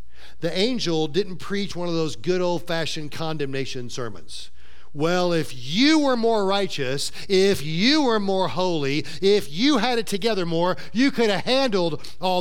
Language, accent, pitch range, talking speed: English, American, 120-195 Hz, 160 wpm